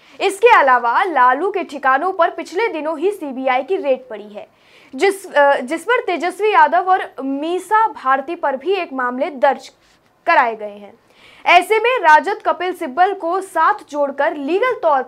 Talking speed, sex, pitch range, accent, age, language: 160 wpm, female, 270-365 Hz, native, 20-39, Hindi